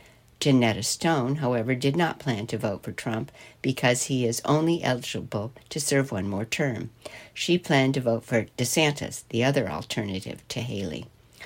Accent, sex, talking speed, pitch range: American, female, 160 wpm, 120-150 Hz